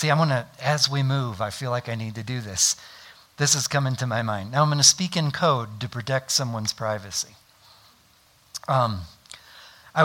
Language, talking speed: English, 205 wpm